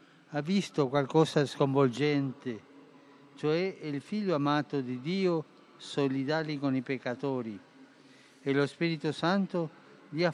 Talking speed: 115 wpm